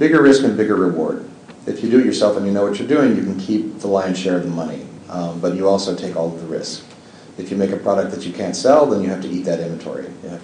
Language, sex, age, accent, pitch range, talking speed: English, male, 40-59, American, 85-95 Hz, 300 wpm